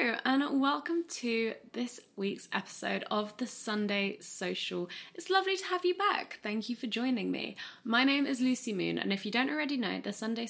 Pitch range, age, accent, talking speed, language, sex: 190-245 Hz, 20-39, British, 200 wpm, English, female